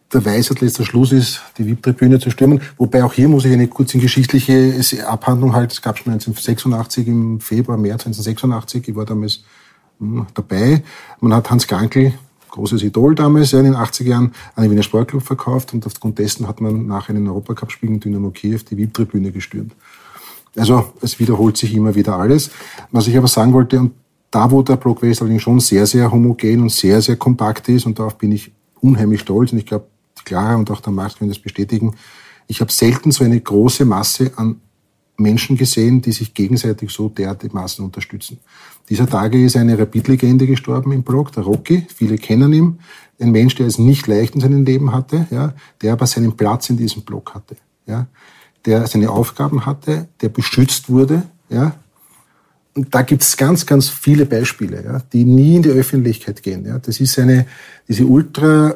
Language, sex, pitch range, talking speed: German, male, 110-130 Hz, 190 wpm